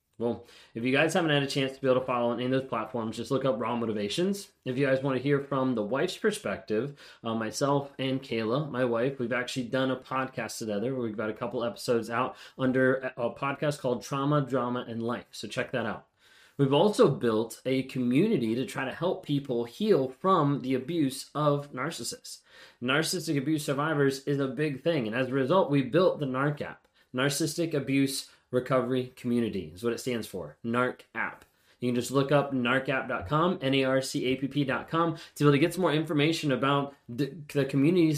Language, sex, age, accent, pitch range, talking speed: English, male, 20-39, American, 125-150 Hz, 195 wpm